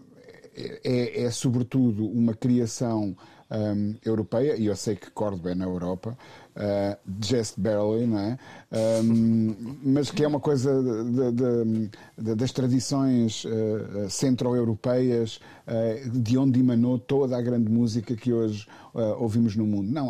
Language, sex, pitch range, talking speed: Portuguese, male, 110-135 Hz, 105 wpm